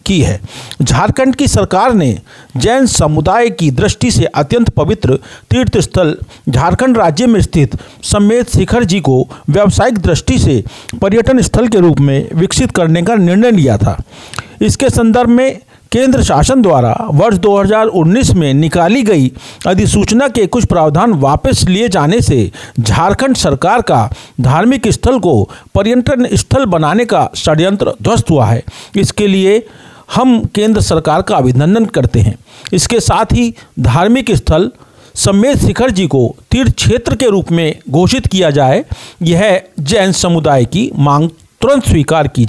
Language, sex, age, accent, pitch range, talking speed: Hindi, male, 50-69, native, 135-230 Hz, 145 wpm